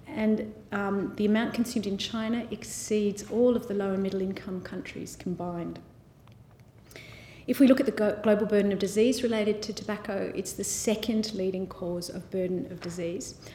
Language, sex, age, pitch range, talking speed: English, female, 40-59, 175-220 Hz, 170 wpm